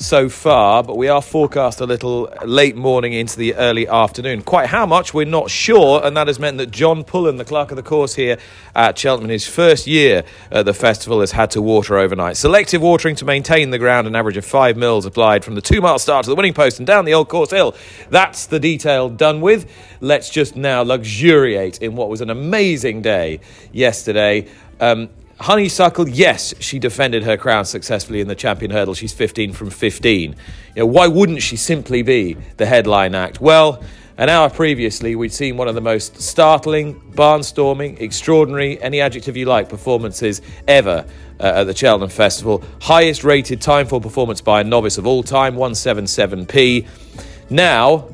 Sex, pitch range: male, 110-155 Hz